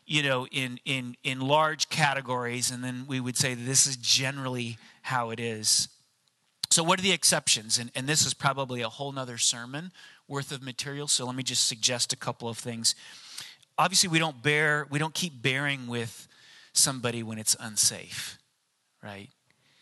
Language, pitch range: English, 120-145 Hz